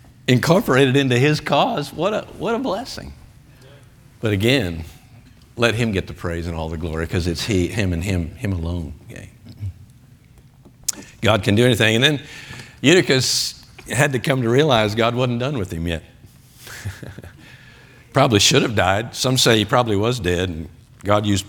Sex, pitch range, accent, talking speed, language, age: male, 95-130 Hz, American, 170 wpm, English, 50-69